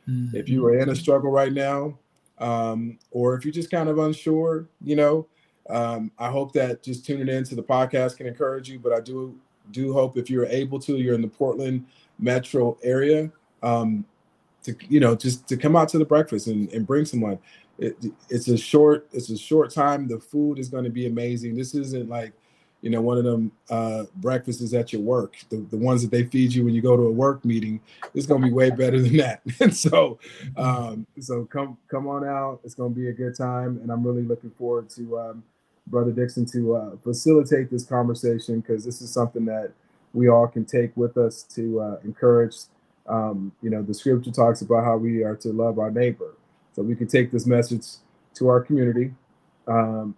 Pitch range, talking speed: 115-130 Hz, 210 wpm